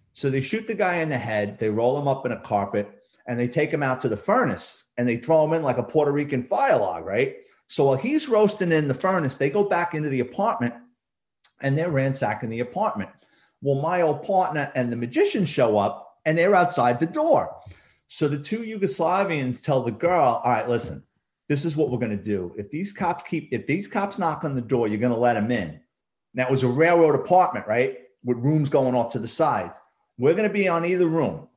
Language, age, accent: English, 40-59, American